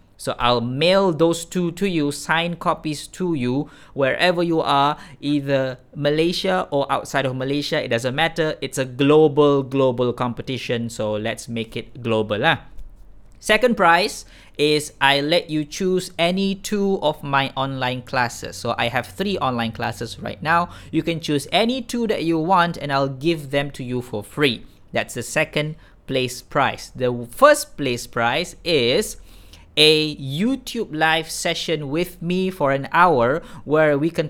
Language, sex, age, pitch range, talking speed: Malay, male, 20-39, 125-165 Hz, 165 wpm